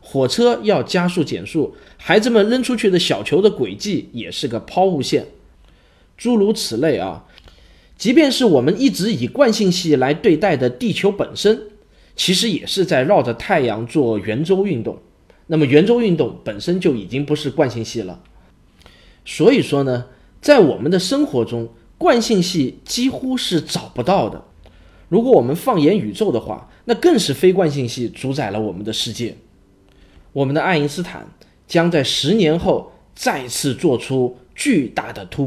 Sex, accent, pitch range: male, native, 120-185 Hz